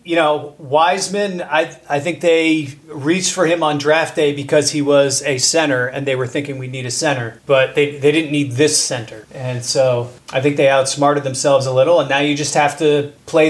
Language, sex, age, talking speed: English, male, 30-49, 220 wpm